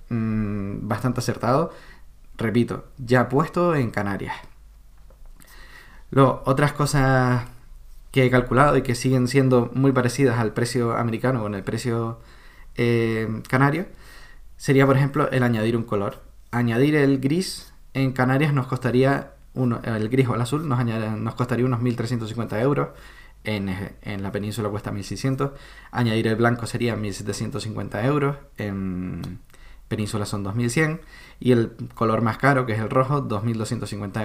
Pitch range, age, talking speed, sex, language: 110-130 Hz, 20-39, 140 wpm, male, Spanish